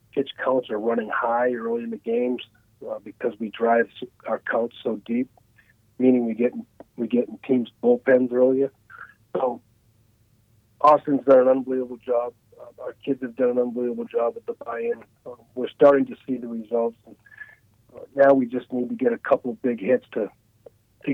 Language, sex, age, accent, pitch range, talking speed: English, male, 40-59, American, 115-140 Hz, 190 wpm